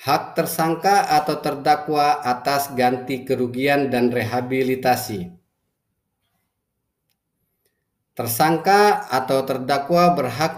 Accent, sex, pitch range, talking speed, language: native, male, 125-150 Hz, 75 wpm, Indonesian